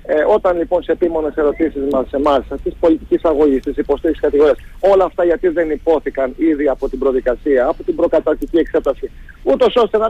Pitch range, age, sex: 155-215 Hz, 40-59, male